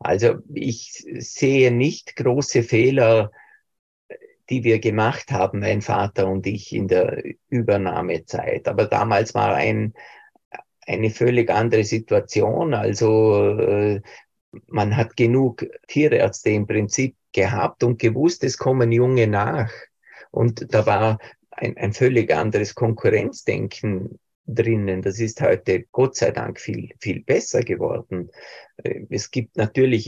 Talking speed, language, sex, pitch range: 120 wpm, German, male, 105-120 Hz